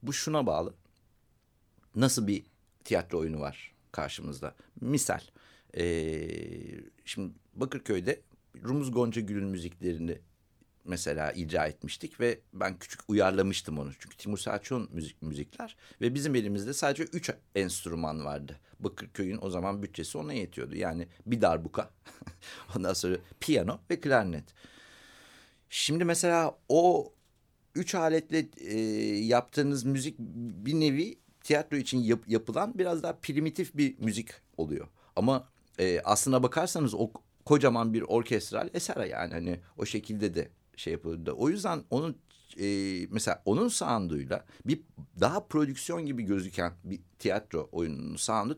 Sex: male